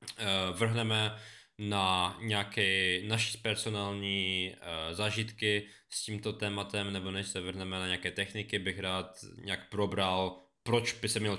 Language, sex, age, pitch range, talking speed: Czech, male, 20-39, 95-115 Hz, 125 wpm